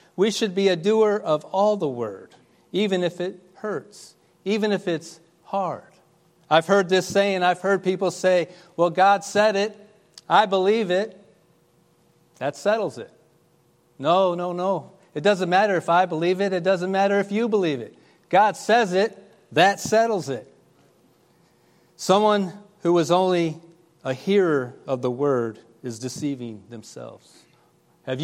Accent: American